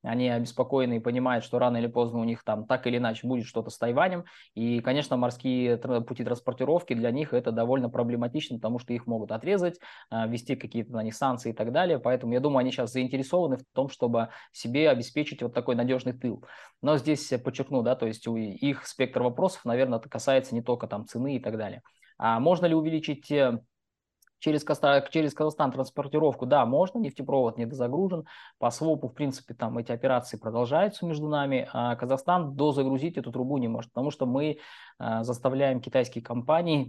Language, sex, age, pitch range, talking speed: Russian, male, 20-39, 115-135 Hz, 180 wpm